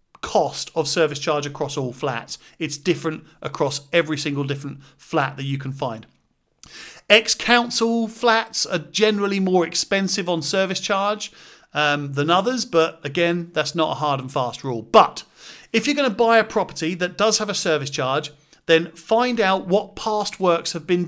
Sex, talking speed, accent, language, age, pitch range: male, 175 wpm, British, English, 40-59, 155-205 Hz